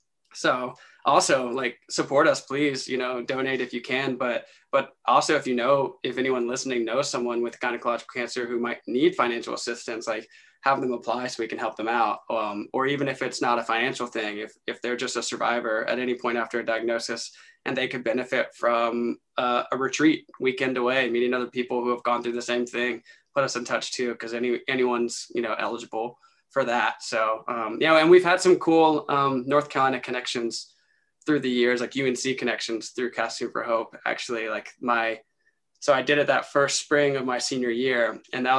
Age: 20-39